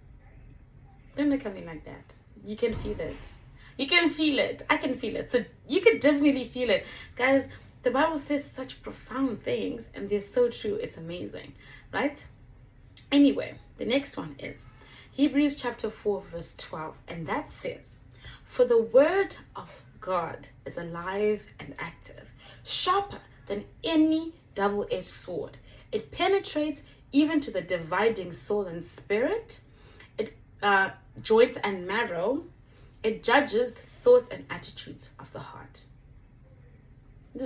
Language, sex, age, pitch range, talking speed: English, female, 20-39, 170-285 Hz, 140 wpm